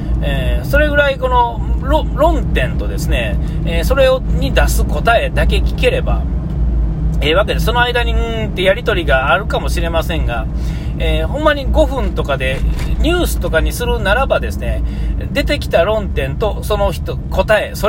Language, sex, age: Japanese, male, 40-59